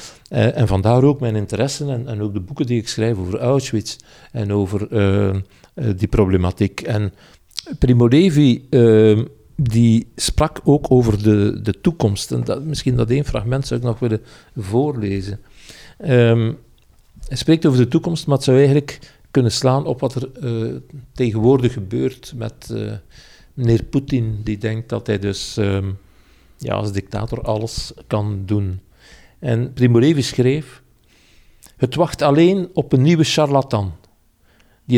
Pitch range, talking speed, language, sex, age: 110-135 Hz, 145 wpm, Dutch, male, 50-69